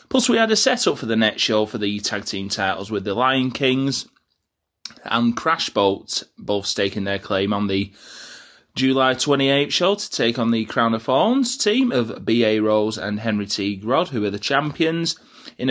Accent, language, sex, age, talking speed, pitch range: British, English, male, 20-39, 195 wpm, 105-150 Hz